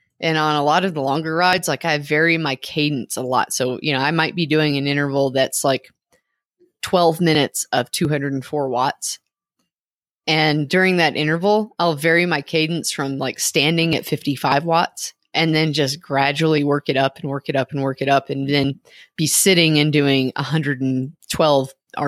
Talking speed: 180 wpm